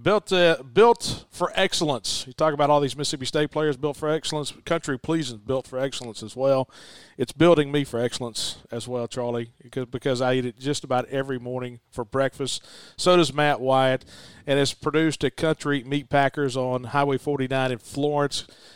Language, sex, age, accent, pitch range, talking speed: English, male, 40-59, American, 130-155 Hz, 185 wpm